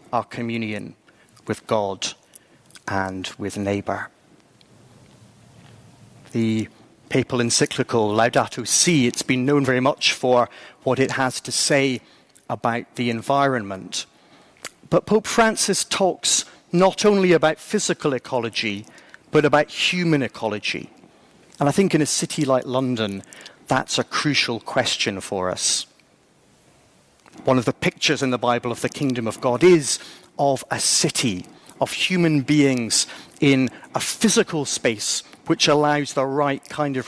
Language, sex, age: English, male, 40-59